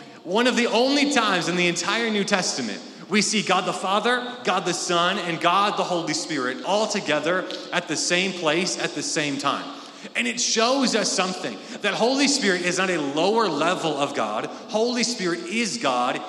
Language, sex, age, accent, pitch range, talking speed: English, male, 30-49, American, 150-215 Hz, 190 wpm